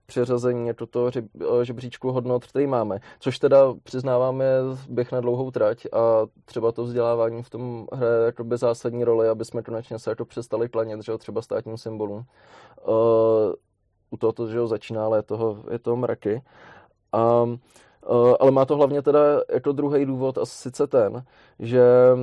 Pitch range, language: 115-130 Hz, Czech